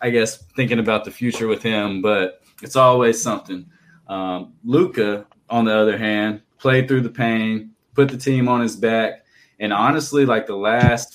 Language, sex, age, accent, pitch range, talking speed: English, male, 20-39, American, 110-130 Hz, 180 wpm